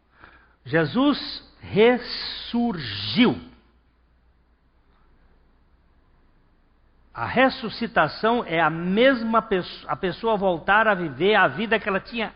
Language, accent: Portuguese, Brazilian